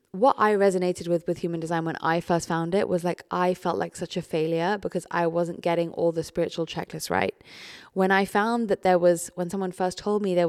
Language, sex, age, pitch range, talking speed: English, female, 20-39, 170-195 Hz, 235 wpm